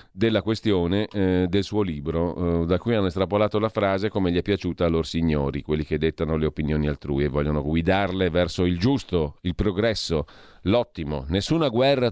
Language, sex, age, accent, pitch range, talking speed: Italian, male, 40-59, native, 85-110 Hz, 185 wpm